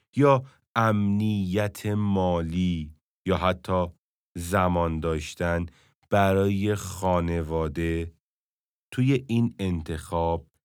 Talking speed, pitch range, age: 70 wpm, 80-105 Hz, 40-59